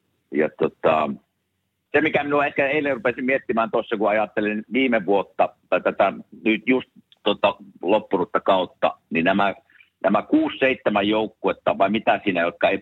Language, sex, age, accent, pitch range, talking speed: Finnish, male, 50-69, native, 95-120 Hz, 140 wpm